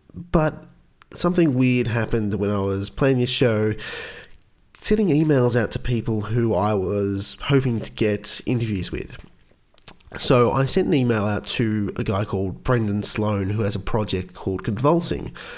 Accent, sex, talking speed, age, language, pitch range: Australian, male, 160 wpm, 30-49, English, 105-145 Hz